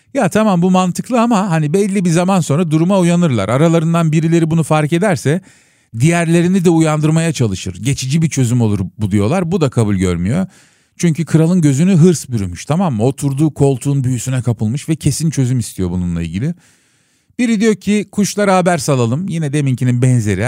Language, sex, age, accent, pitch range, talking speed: Turkish, male, 40-59, native, 115-165 Hz, 165 wpm